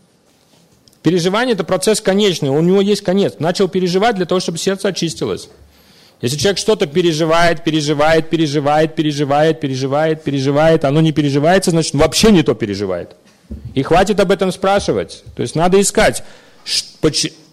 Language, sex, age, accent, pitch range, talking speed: Russian, male, 40-59, native, 150-195 Hz, 140 wpm